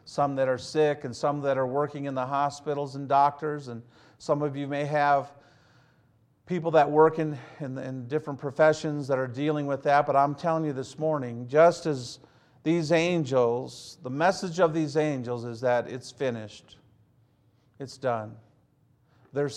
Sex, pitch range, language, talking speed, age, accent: male, 120-145 Hz, English, 170 wpm, 50-69, American